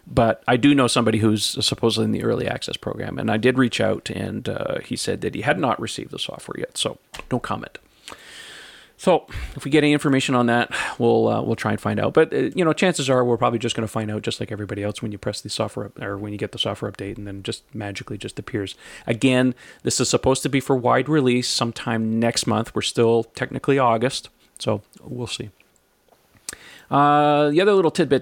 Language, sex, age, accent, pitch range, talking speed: English, male, 40-59, American, 110-135 Hz, 230 wpm